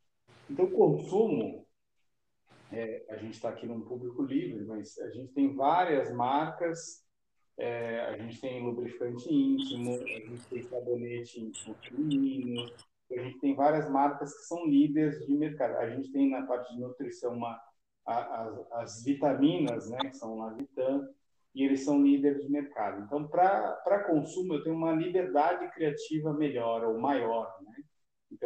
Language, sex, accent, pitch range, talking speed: Portuguese, male, Brazilian, 120-150 Hz, 160 wpm